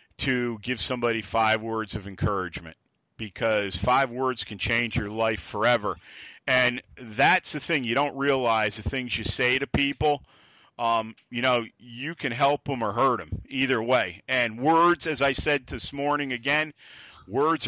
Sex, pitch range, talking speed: male, 110-140 Hz, 165 wpm